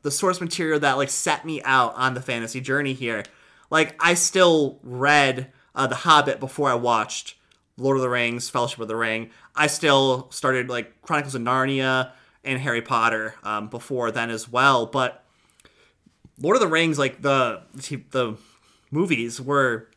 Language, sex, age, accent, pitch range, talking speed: English, male, 30-49, American, 125-155 Hz, 170 wpm